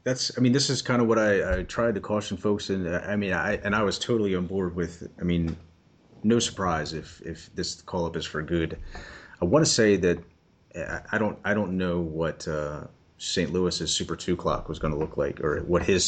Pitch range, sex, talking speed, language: 80-95 Hz, male, 230 wpm, English